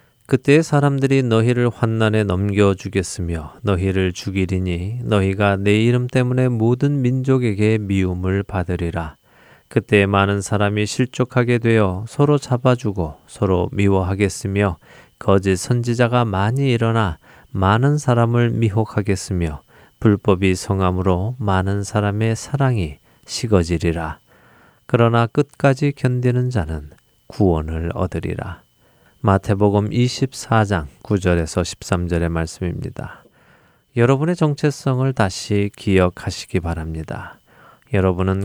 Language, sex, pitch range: Korean, male, 95-125 Hz